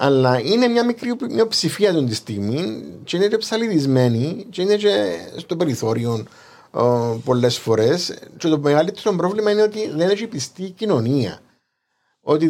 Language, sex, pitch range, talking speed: Greek, male, 125-205 Hz, 150 wpm